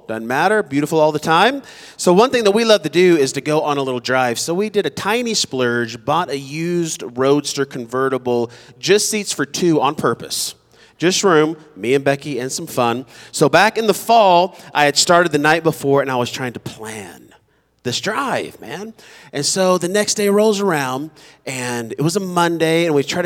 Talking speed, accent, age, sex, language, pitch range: 210 wpm, American, 30-49, male, English, 135-200 Hz